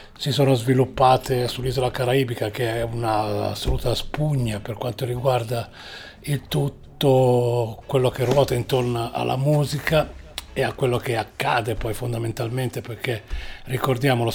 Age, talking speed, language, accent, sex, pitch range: 40-59, 125 wpm, Italian, native, male, 120-145 Hz